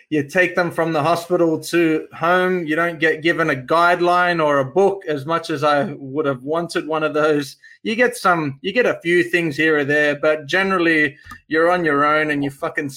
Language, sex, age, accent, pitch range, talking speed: English, male, 20-39, Australian, 140-170 Hz, 220 wpm